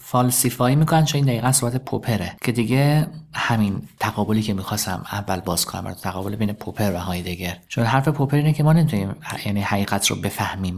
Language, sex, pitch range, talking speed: Persian, male, 105-145 Hz, 180 wpm